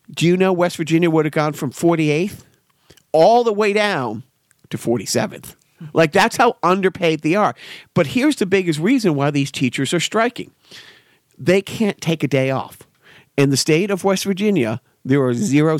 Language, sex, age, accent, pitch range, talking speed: English, male, 40-59, American, 140-180 Hz, 180 wpm